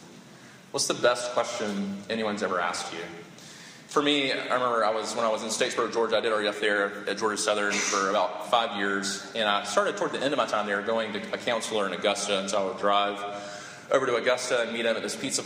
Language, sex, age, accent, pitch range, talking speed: English, male, 30-49, American, 100-115 Hz, 235 wpm